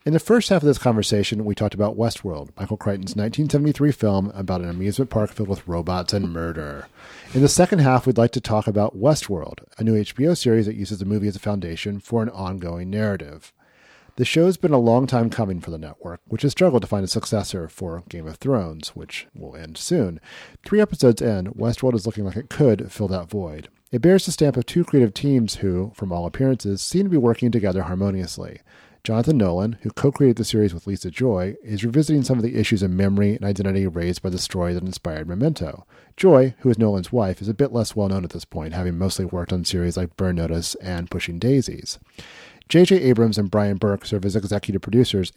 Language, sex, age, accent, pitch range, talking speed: English, male, 40-59, American, 95-125 Hz, 215 wpm